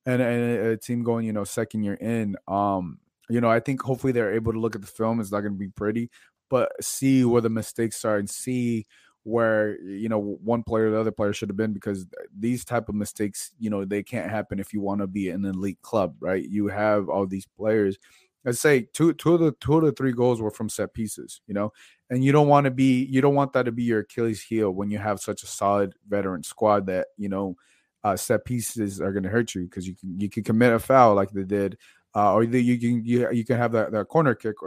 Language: English